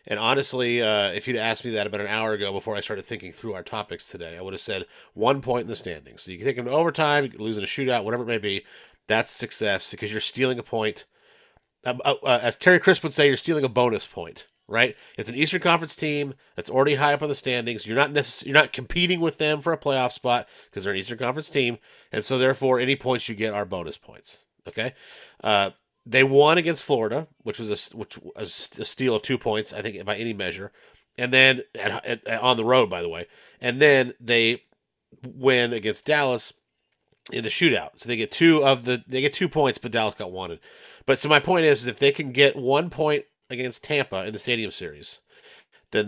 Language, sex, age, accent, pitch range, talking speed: English, male, 30-49, American, 110-145 Hz, 230 wpm